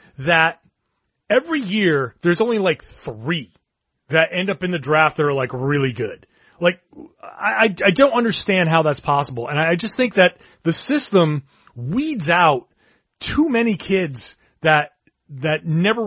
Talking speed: 155 wpm